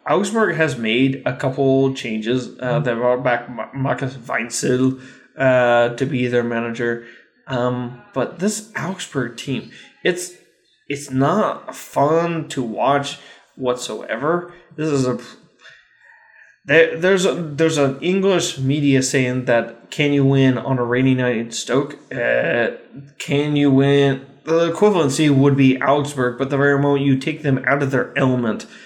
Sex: male